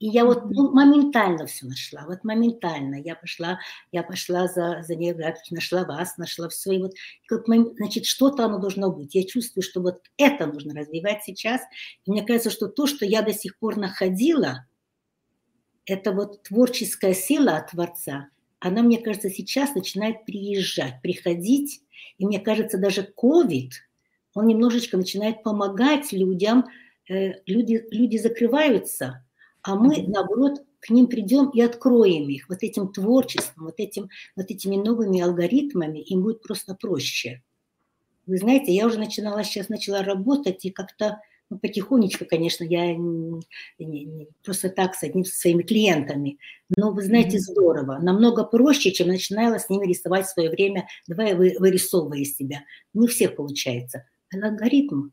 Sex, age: female, 60-79